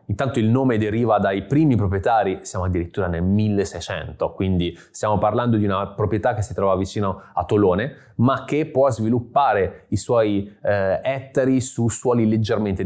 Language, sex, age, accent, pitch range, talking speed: Italian, male, 20-39, native, 100-120 Hz, 160 wpm